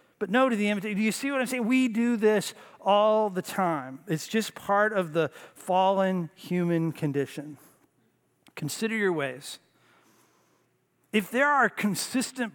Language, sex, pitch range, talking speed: English, male, 155-205 Hz, 155 wpm